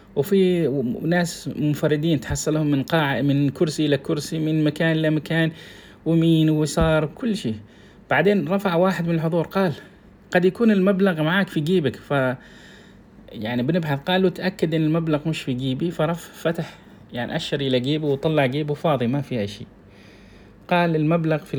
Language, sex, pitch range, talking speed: Arabic, male, 135-170 Hz, 155 wpm